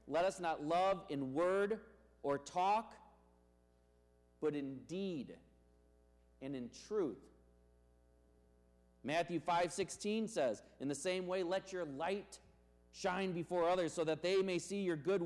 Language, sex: English, male